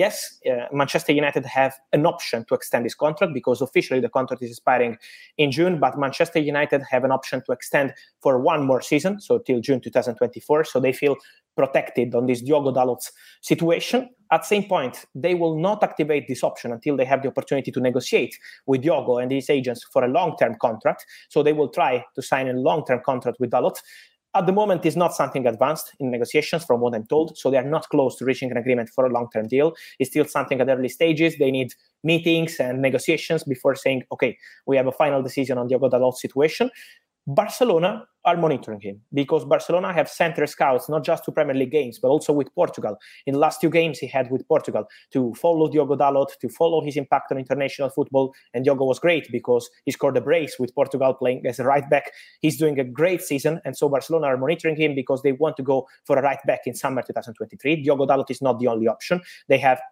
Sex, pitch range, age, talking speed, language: male, 130-160 Hz, 20-39, 215 wpm, English